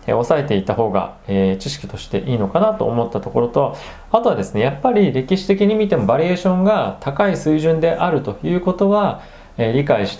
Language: Japanese